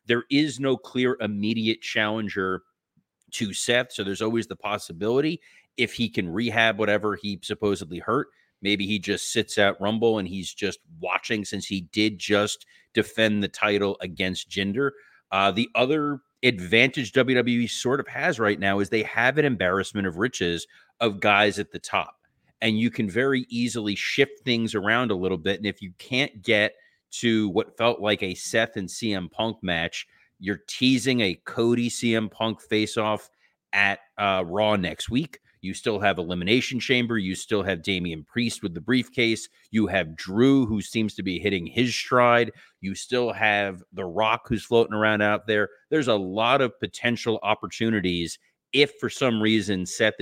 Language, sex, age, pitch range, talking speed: English, male, 30-49, 100-120 Hz, 170 wpm